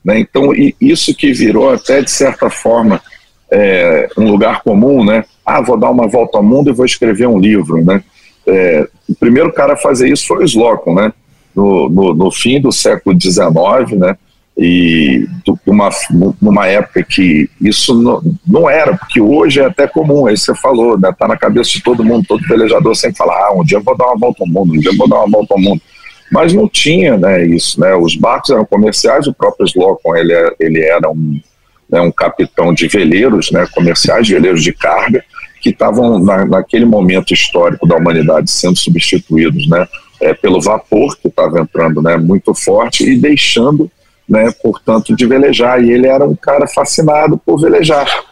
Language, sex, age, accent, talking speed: Portuguese, male, 50-69, Brazilian, 185 wpm